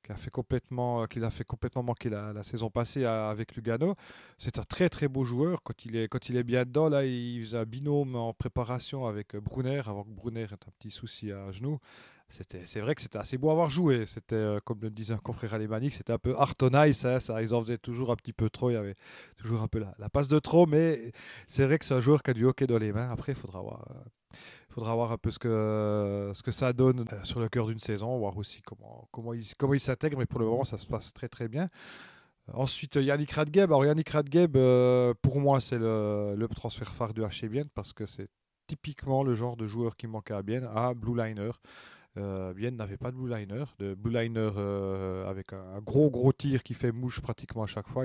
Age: 30-49